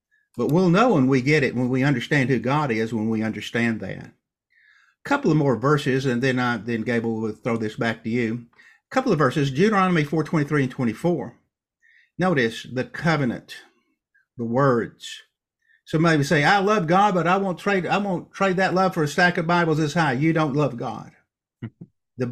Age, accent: 50-69, American